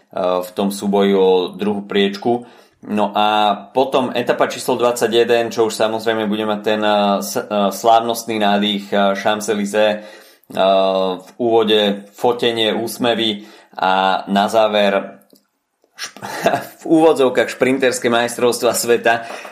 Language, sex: Slovak, male